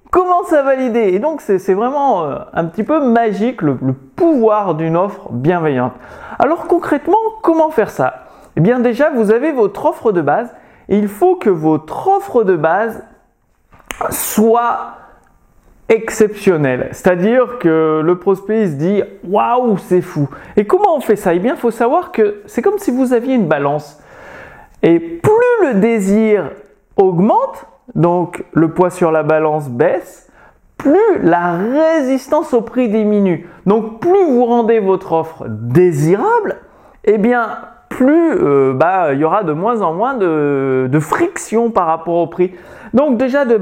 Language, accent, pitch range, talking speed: French, French, 175-275 Hz, 160 wpm